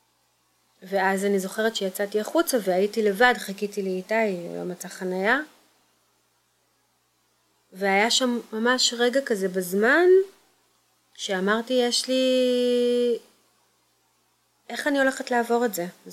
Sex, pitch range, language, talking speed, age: female, 190-240 Hz, Hebrew, 110 wpm, 30-49